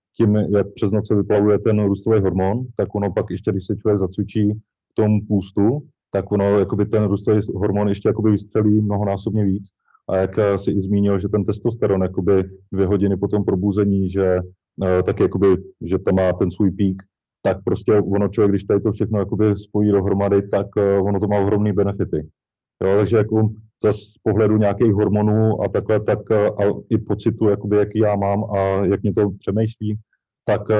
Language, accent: Czech, native